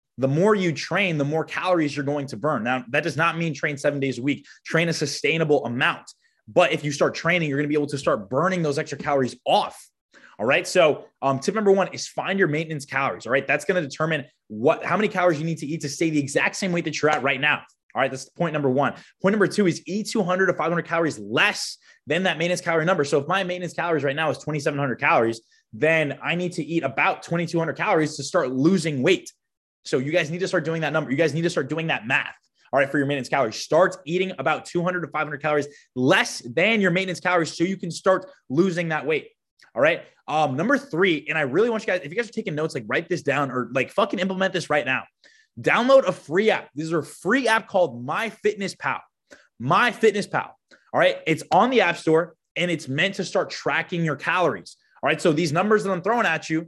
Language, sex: English, male